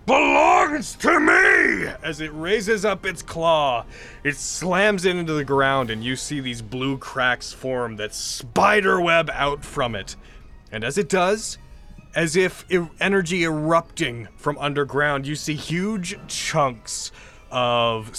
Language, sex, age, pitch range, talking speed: English, male, 30-49, 120-170 Hz, 140 wpm